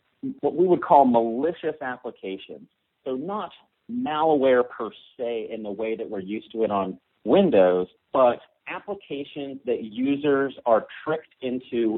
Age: 40-59